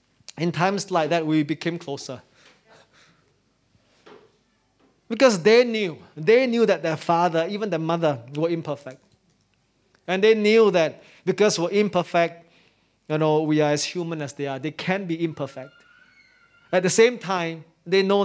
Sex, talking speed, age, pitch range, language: male, 150 wpm, 20-39, 155-200 Hz, English